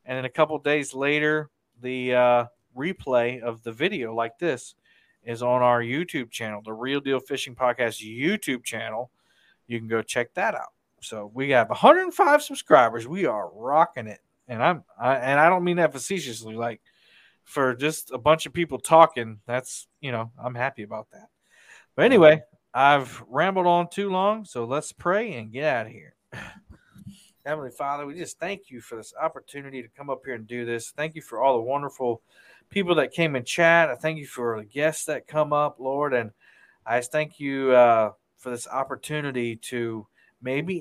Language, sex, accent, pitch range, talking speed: English, male, American, 120-150 Hz, 190 wpm